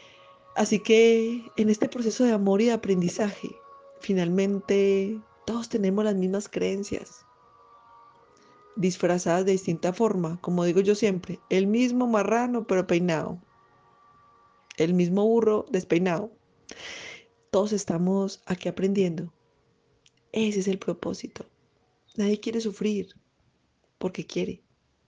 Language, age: Spanish, 30-49